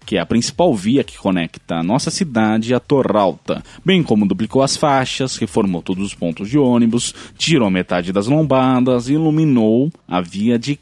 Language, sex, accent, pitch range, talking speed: Portuguese, male, Brazilian, 100-155 Hz, 180 wpm